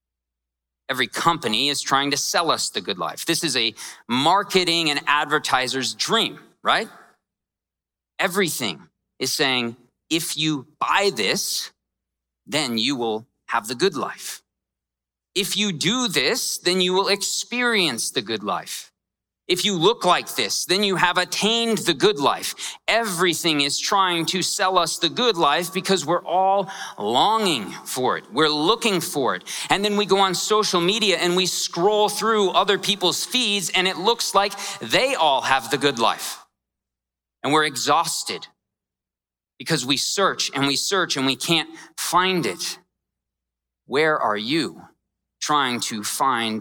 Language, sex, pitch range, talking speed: English, male, 130-195 Hz, 150 wpm